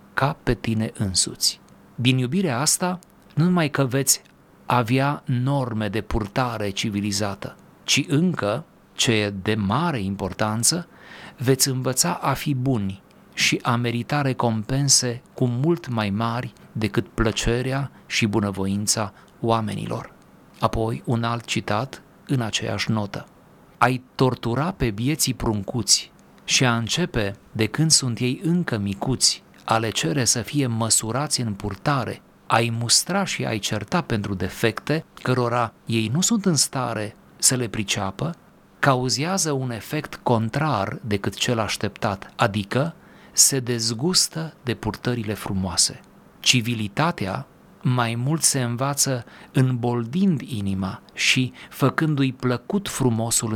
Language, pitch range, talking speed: Romanian, 110-140 Hz, 120 wpm